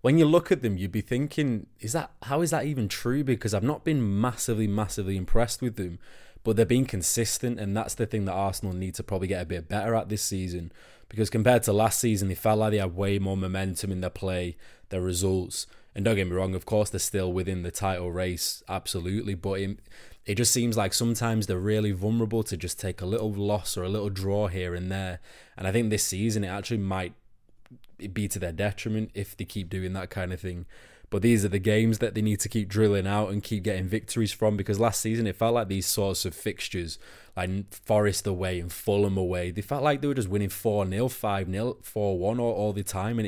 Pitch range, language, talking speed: 95-115 Hz, English, 235 wpm